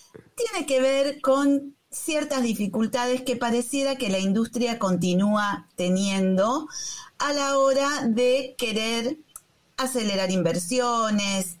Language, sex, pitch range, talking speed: Spanish, female, 195-260 Hz, 105 wpm